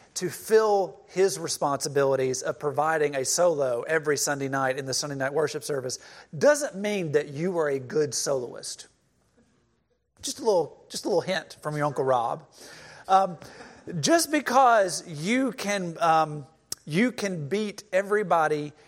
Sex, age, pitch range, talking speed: male, 40-59, 155-220 Hz, 145 wpm